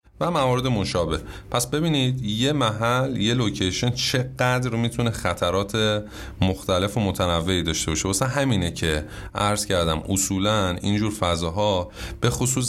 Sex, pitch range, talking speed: male, 95-125 Hz, 130 wpm